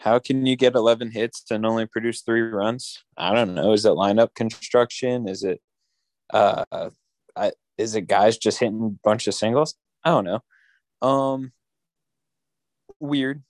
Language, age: English, 20-39